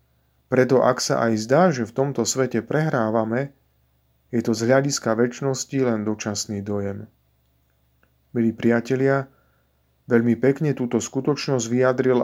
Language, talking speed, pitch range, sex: Slovak, 125 wpm, 105-135 Hz, male